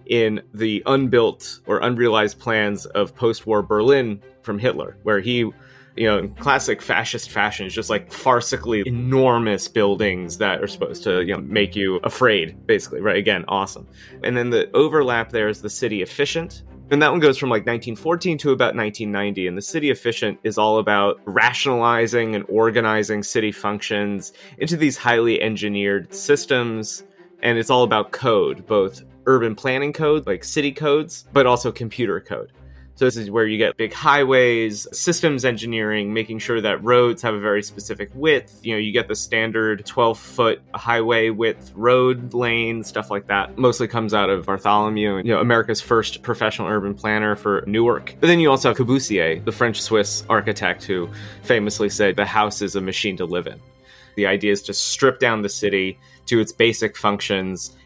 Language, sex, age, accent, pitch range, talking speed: English, male, 30-49, American, 105-125 Hz, 175 wpm